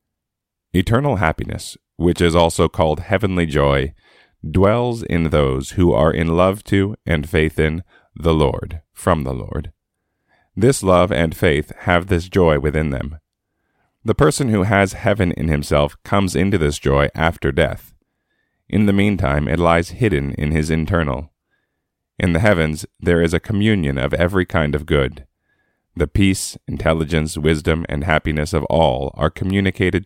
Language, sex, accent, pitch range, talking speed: English, male, American, 75-95 Hz, 155 wpm